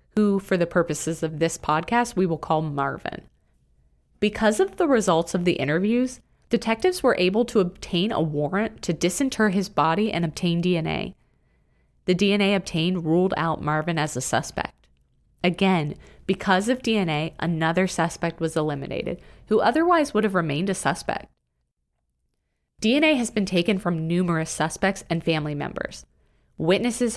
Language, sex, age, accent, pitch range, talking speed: English, female, 30-49, American, 155-200 Hz, 150 wpm